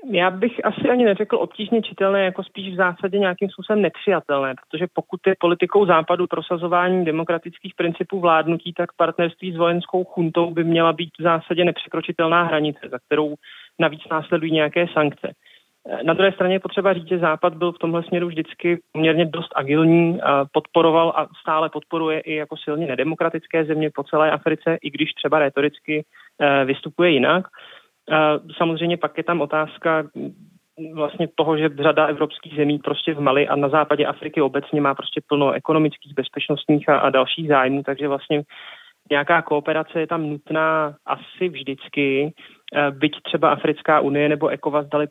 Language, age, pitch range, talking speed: Czech, 30-49, 150-175 Hz, 155 wpm